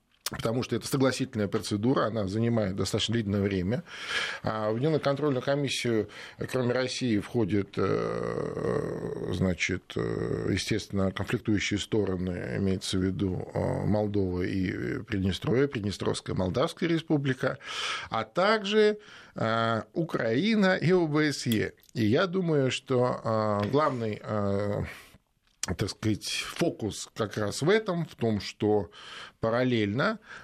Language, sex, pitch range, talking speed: Russian, male, 105-140 Hz, 95 wpm